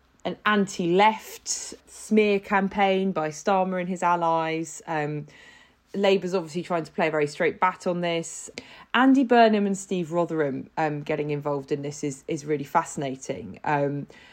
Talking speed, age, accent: 150 wpm, 20-39, British